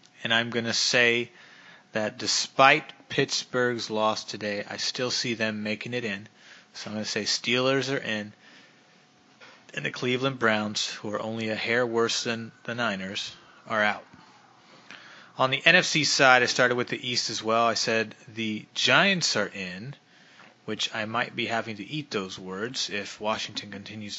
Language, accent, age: English, American, 30-49